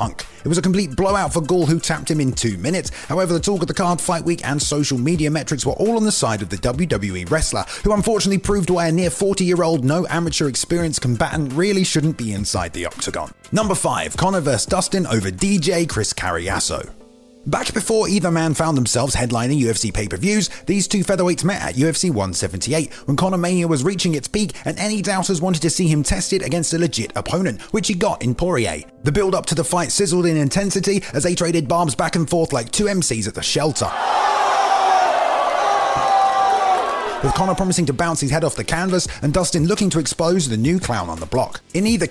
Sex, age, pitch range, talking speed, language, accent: male, 30-49, 140-190 Hz, 205 wpm, English, British